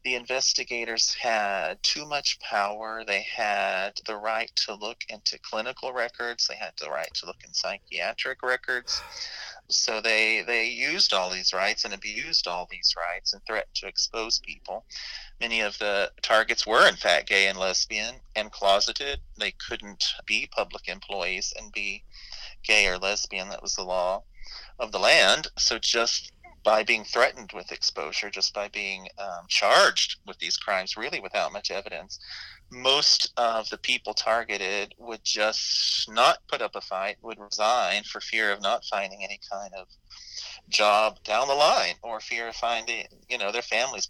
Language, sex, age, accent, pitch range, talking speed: English, male, 30-49, American, 100-115 Hz, 165 wpm